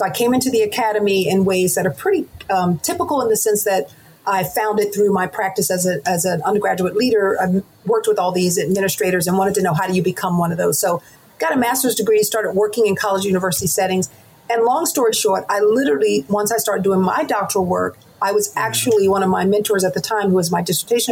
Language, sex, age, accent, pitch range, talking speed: English, female, 40-59, American, 185-220 Hz, 235 wpm